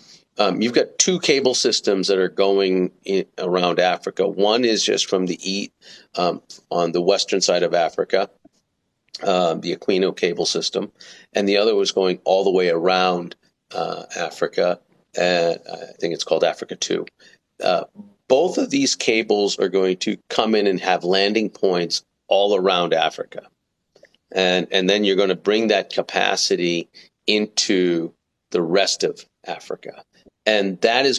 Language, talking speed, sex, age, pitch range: English, 160 wpm, male, 40-59, 90-110 Hz